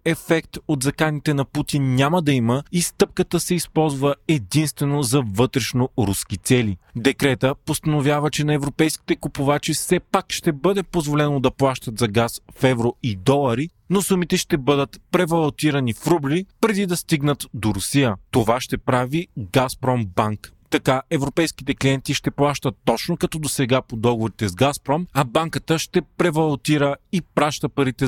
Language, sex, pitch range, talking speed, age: Bulgarian, male, 120-160 Hz, 150 wpm, 30-49